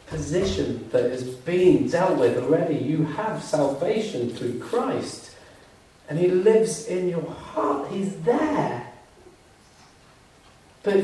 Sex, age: male, 40-59